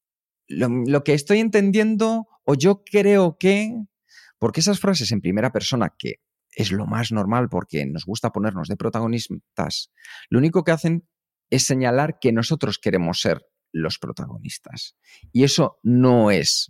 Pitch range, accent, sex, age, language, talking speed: 115-160 Hz, Spanish, male, 40-59, Spanish, 150 wpm